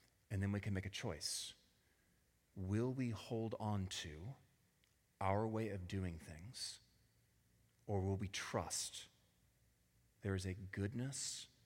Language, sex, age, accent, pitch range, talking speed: English, male, 30-49, American, 95-110 Hz, 130 wpm